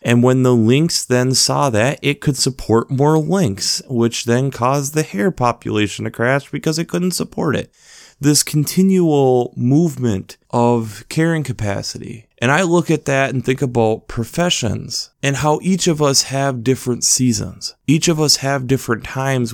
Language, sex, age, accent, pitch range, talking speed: English, male, 30-49, American, 110-135 Hz, 165 wpm